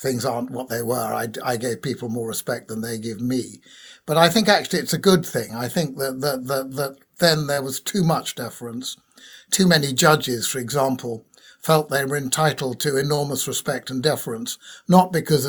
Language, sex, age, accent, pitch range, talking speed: English, male, 60-79, British, 130-160 Hz, 200 wpm